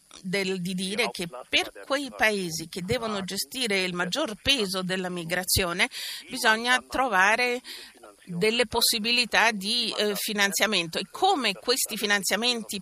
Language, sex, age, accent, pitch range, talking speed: Italian, female, 50-69, native, 200-245 Hz, 120 wpm